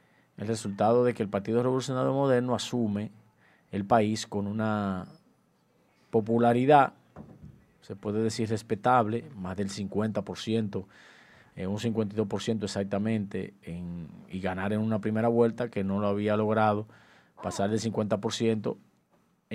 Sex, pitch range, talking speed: male, 100-120 Hz, 125 wpm